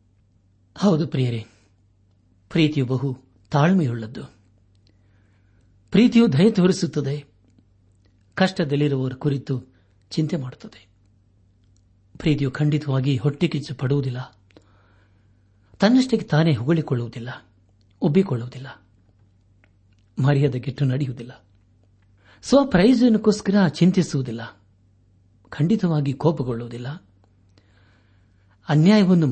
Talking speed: 55 wpm